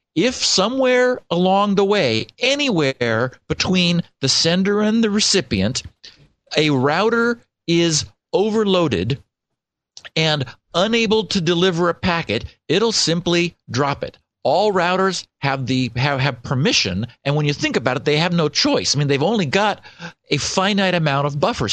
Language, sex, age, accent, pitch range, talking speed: English, male, 50-69, American, 135-190 Hz, 145 wpm